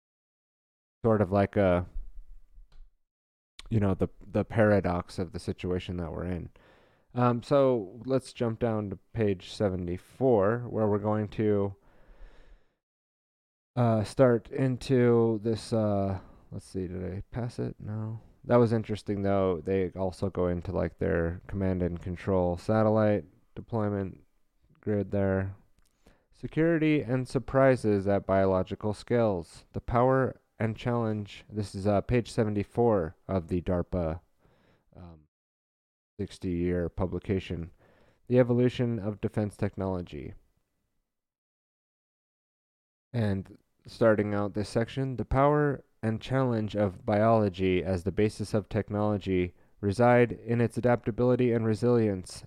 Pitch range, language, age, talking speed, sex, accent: 90-115 Hz, English, 30-49, 120 wpm, male, American